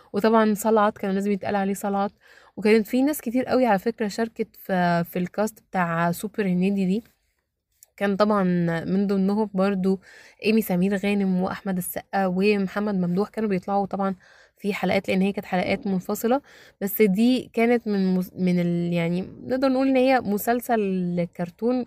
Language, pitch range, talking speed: Arabic, 180-230 Hz, 155 wpm